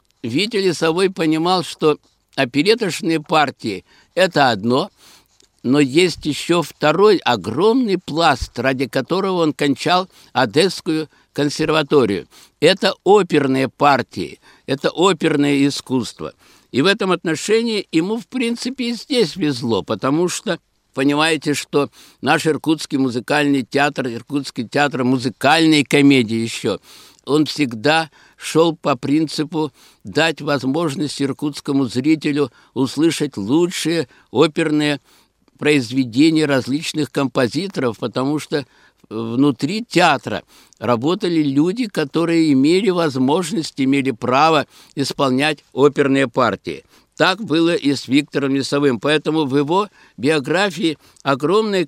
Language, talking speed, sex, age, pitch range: Russian, 105 wpm, male, 60-79, 135-165 Hz